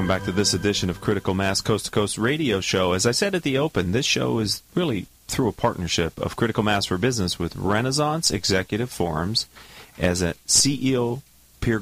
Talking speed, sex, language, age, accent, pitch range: 200 wpm, male, English, 40-59, American, 95-120 Hz